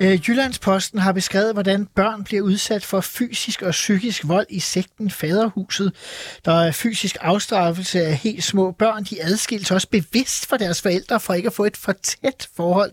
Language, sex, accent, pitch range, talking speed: Danish, male, native, 180-225 Hz, 175 wpm